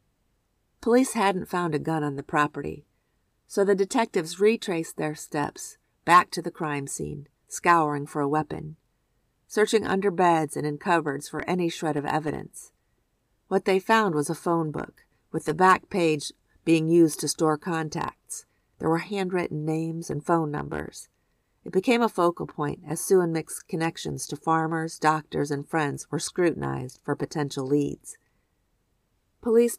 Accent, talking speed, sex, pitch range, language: American, 155 wpm, female, 150-180 Hz, English